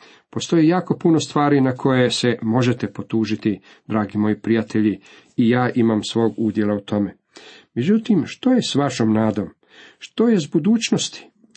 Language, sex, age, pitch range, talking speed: Croatian, male, 40-59, 110-130 Hz, 150 wpm